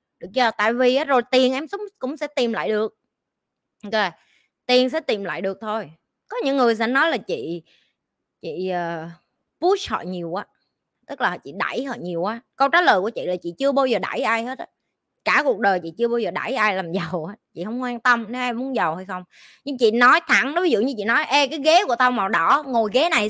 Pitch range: 210-295 Hz